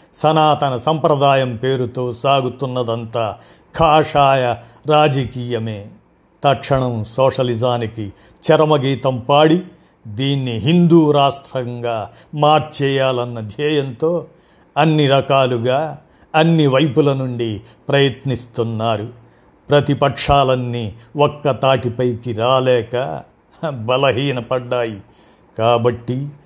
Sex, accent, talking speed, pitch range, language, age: male, native, 60 wpm, 120-145 Hz, Telugu, 50-69